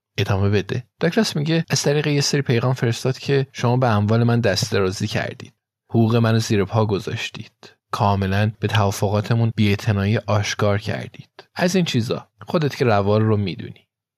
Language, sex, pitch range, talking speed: Persian, male, 105-130 Hz, 150 wpm